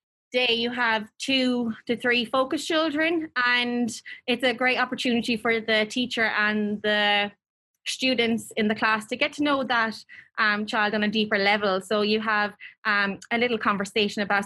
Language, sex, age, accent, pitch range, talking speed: English, female, 20-39, Irish, 200-235 Hz, 170 wpm